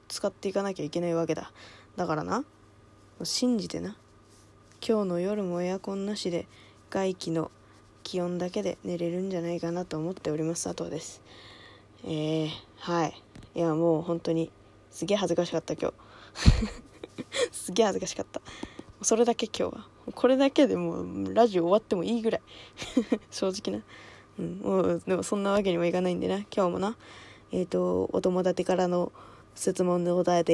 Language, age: Japanese, 20-39